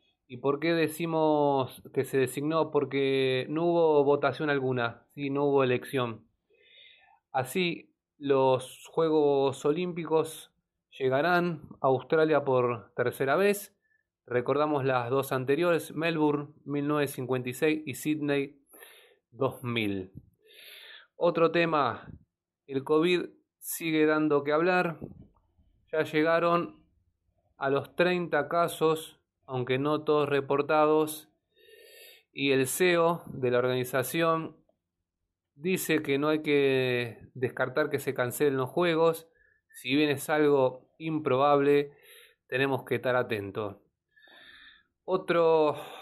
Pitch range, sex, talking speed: 130-165 Hz, male, 105 wpm